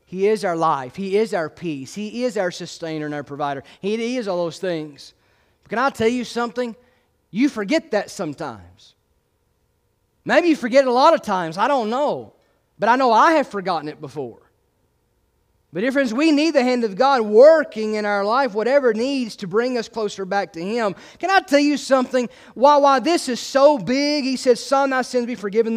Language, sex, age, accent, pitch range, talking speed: English, male, 30-49, American, 185-265 Hz, 205 wpm